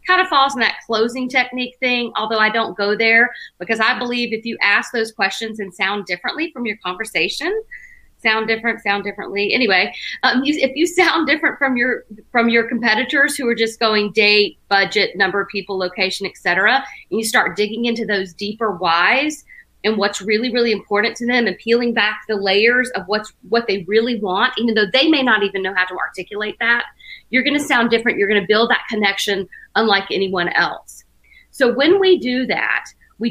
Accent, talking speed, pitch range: American, 195 wpm, 205-255 Hz